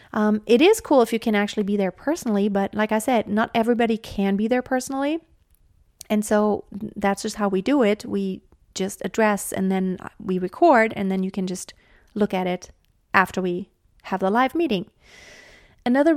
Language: English